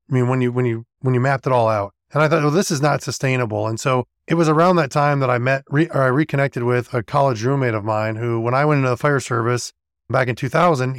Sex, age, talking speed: male, 30-49, 275 wpm